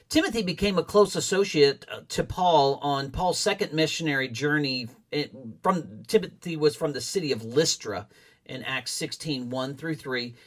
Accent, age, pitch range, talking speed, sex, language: American, 50-69, 145-185 Hz, 145 wpm, male, English